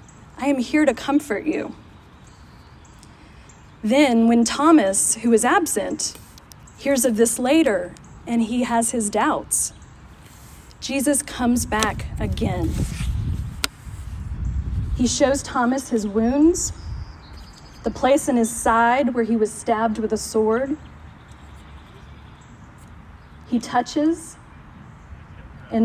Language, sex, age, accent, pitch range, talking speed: English, female, 30-49, American, 225-275 Hz, 105 wpm